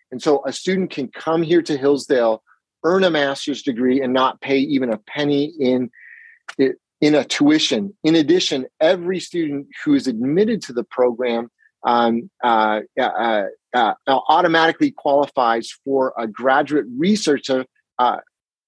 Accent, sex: American, male